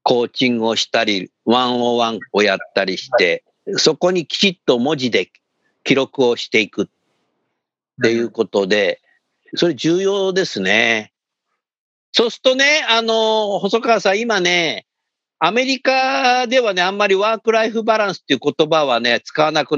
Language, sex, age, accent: Japanese, male, 50-69, native